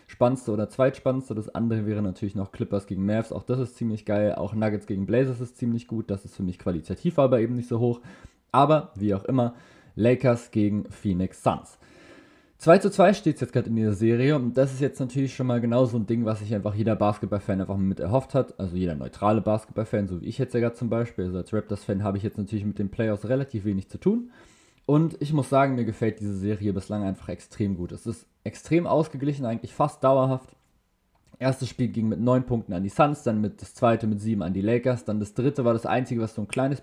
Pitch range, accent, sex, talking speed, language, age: 105-130 Hz, German, male, 240 wpm, German, 20-39